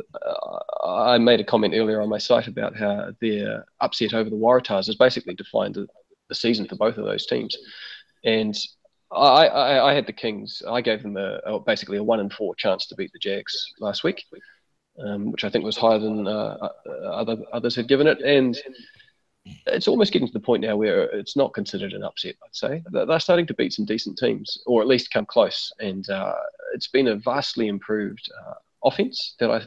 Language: English